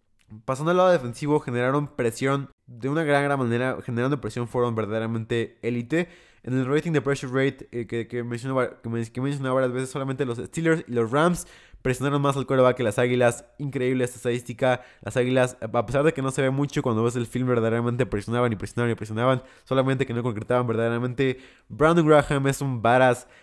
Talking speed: 200 wpm